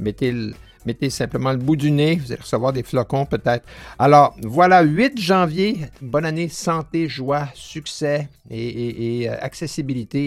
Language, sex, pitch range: French, male, 115-160 Hz